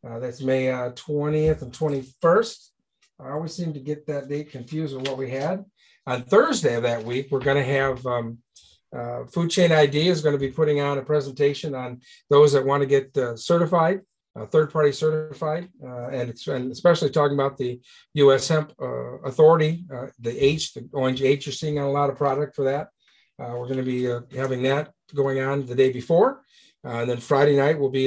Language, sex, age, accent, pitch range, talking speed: English, male, 50-69, American, 130-155 Hz, 210 wpm